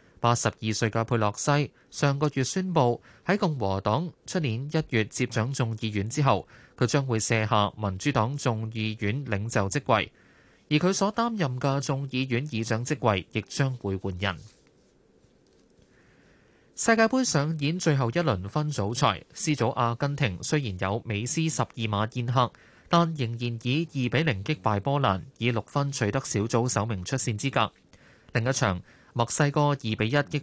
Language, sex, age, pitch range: Chinese, male, 20-39, 110-145 Hz